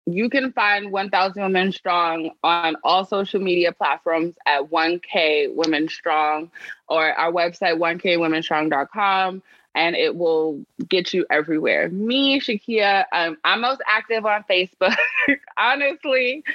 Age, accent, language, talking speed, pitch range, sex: 20-39, American, English, 125 wpm, 190-255 Hz, female